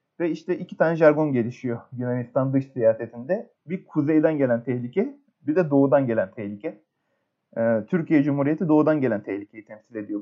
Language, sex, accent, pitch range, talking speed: Turkish, male, native, 115-160 Hz, 145 wpm